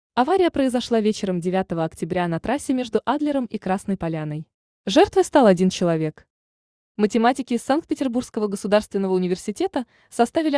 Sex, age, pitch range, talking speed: female, 20-39, 190-250 Hz, 125 wpm